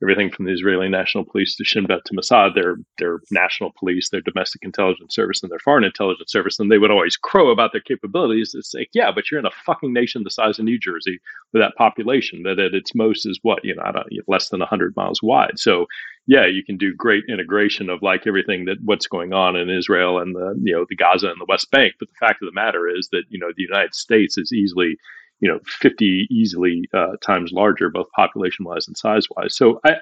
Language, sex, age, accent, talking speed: English, male, 40-59, American, 240 wpm